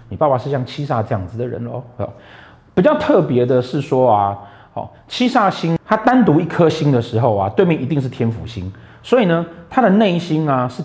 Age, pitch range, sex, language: 30-49, 115-180 Hz, male, Chinese